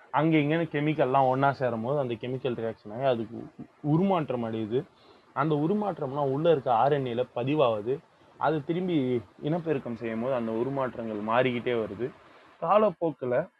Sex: male